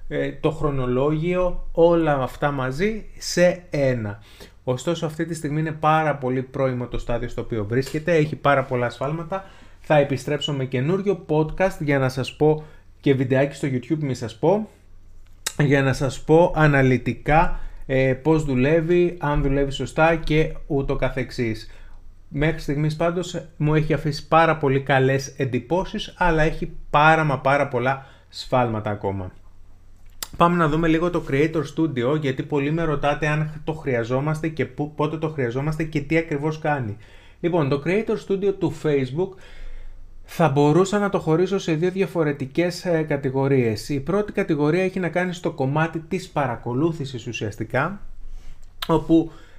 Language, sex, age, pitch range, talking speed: Greek, male, 30-49, 125-165 Hz, 145 wpm